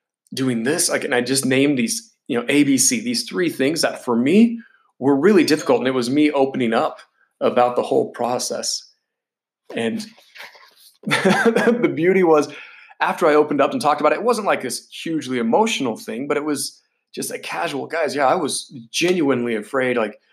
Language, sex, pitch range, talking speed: English, male, 130-210 Hz, 185 wpm